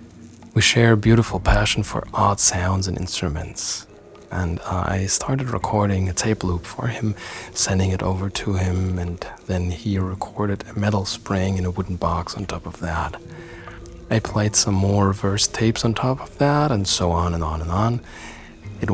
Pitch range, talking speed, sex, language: 85-105 Hz, 185 wpm, male, English